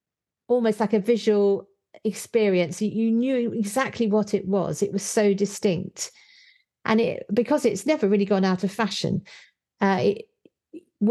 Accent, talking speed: British, 145 wpm